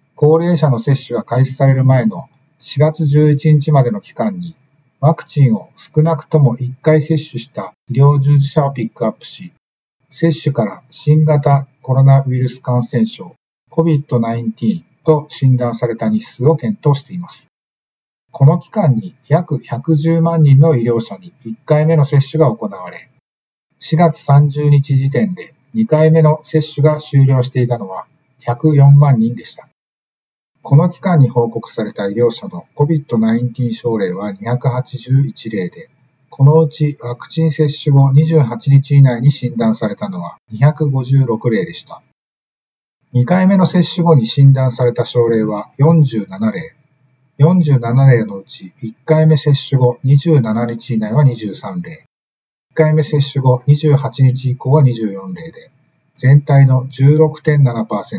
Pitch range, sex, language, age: 125-155 Hz, male, Japanese, 50-69